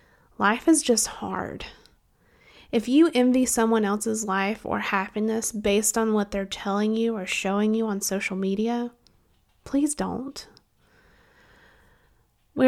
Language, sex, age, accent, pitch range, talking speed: English, female, 20-39, American, 205-240 Hz, 130 wpm